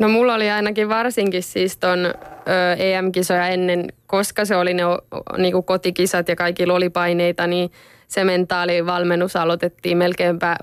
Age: 20-39